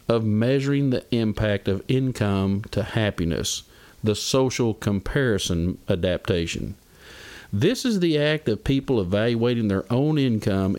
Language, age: English, 50-69